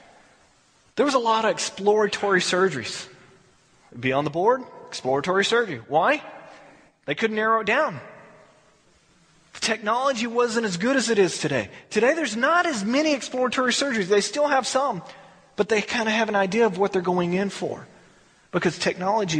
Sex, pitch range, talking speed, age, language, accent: male, 165-235 Hz, 170 wpm, 30-49, English, American